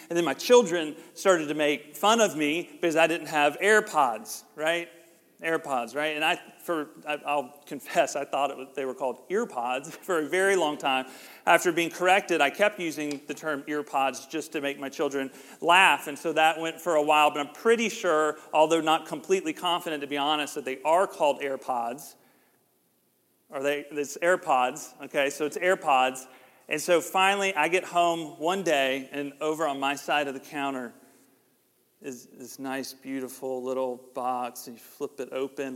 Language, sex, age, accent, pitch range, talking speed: English, male, 40-59, American, 145-175 Hz, 185 wpm